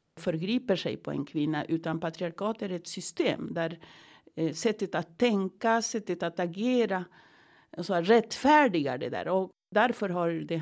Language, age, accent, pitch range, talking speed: Swedish, 60-79, native, 160-205 Hz, 135 wpm